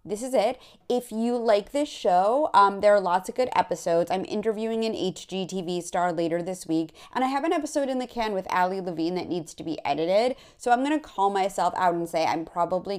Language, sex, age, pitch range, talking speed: English, female, 30-49, 170-220 Hz, 225 wpm